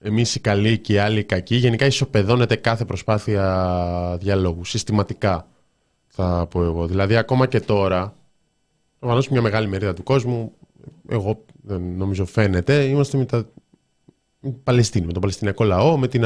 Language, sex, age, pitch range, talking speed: Greek, male, 20-39, 95-135 Hz, 155 wpm